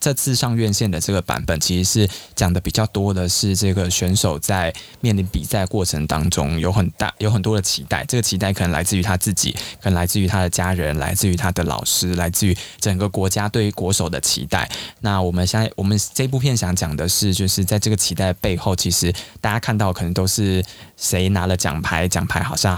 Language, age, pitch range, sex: Chinese, 20-39, 90-105 Hz, male